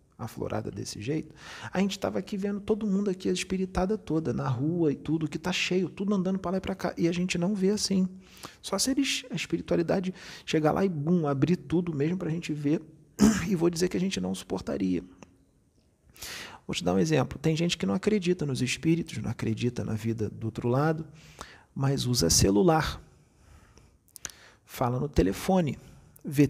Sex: male